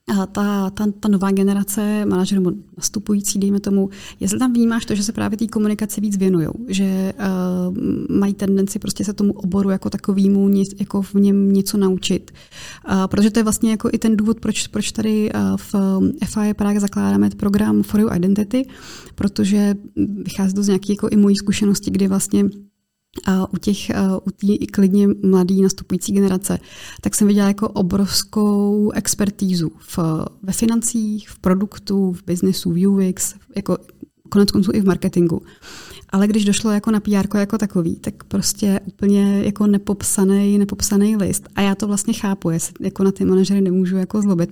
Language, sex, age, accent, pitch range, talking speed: Czech, female, 30-49, native, 190-210 Hz, 165 wpm